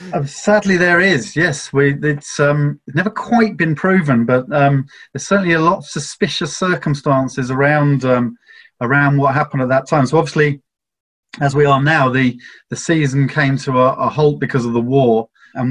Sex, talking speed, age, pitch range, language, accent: male, 180 wpm, 30-49, 125-150 Hz, English, British